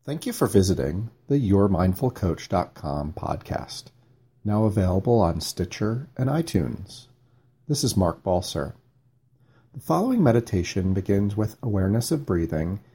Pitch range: 95-125 Hz